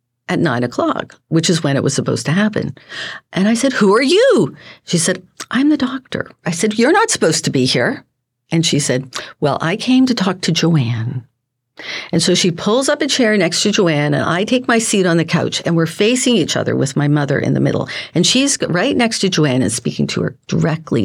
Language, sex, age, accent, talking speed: English, female, 50-69, American, 230 wpm